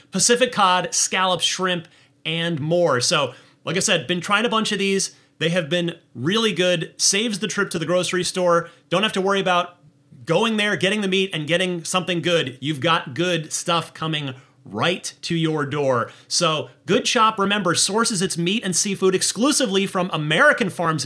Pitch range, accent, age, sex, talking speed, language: 145-205 Hz, American, 30-49, male, 180 wpm, English